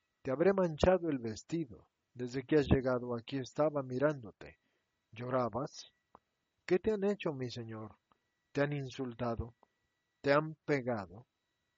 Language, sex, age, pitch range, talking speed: Spanish, male, 50-69, 120-160 Hz, 125 wpm